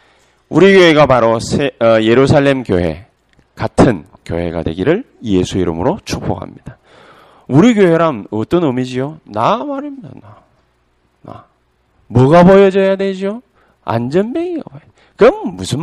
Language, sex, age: Korean, male, 40-59